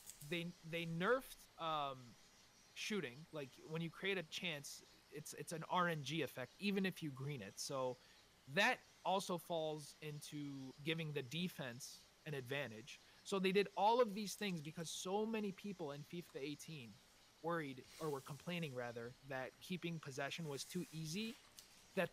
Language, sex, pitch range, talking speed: English, male, 135-180 Hz, 155 wpm